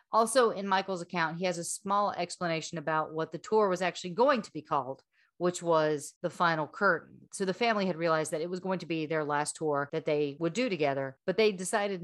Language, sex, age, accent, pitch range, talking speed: English, female, 40-59, American, 155-190 Hz, 230 wpm